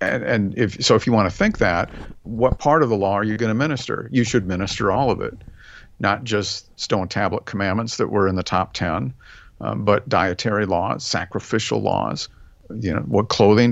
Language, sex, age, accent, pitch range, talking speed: English, male, 50-69, American, 100-130 Hz, 205 wpm